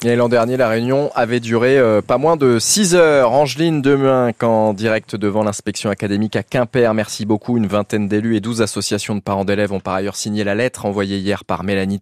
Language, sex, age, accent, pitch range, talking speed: French, male, 20-39, French, 105-135 Hz, 210 wpm